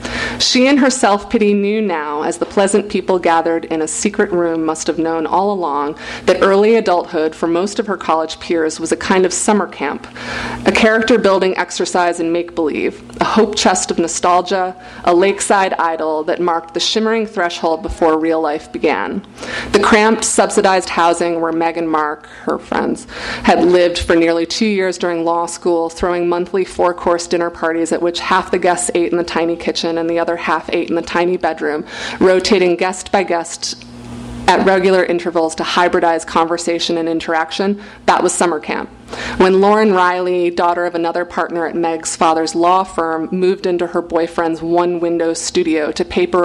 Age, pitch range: 30-49, 165-190 Hz